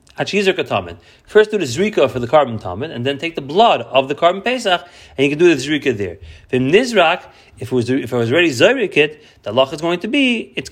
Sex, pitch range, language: male, 125-180 Hz, English